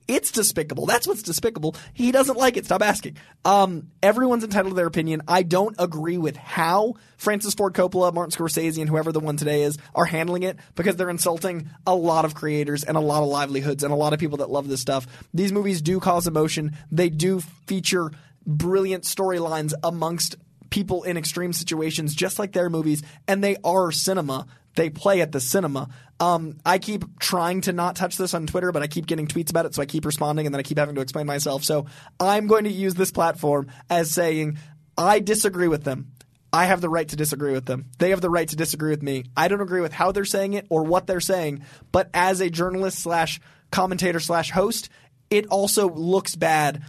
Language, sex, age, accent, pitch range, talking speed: English, male, 20-39, American, 150-185 Hz, 215 wpm